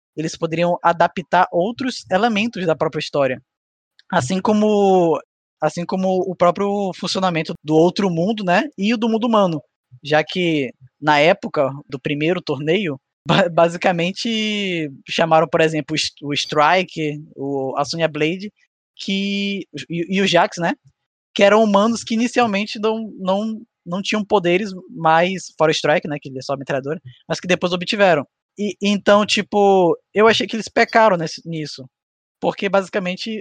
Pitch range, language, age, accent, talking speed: 155-200 Hz, Portuguese, 20-39, Brazilian, 145 wpm